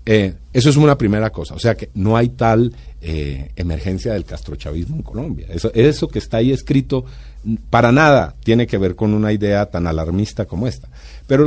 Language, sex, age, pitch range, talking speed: Spanish, male, 50-69, 80-115 Hz, 195 wpm